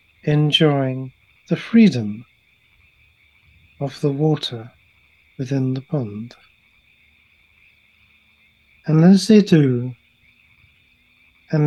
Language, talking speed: English, 70 wpm